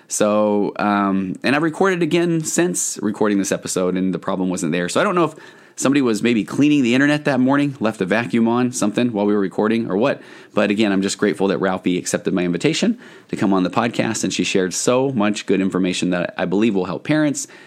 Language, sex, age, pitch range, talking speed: English, male, 30-49, 90-125 Hz, 230 wpm